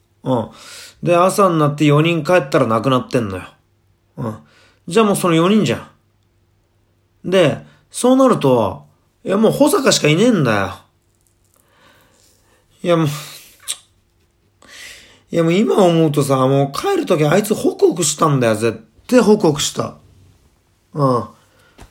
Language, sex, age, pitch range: Japanese, male, 30-49, 100-145 Hz